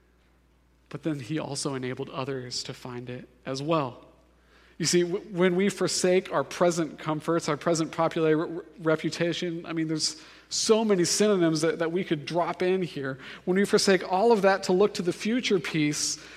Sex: male